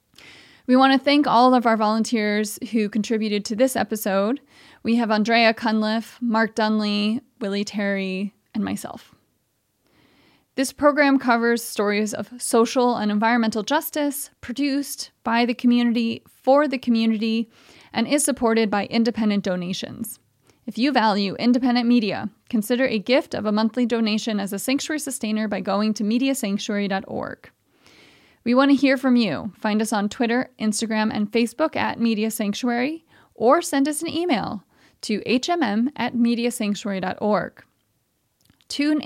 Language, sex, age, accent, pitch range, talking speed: English, female, 30-49, American, 215-260 Hz, 140 wpm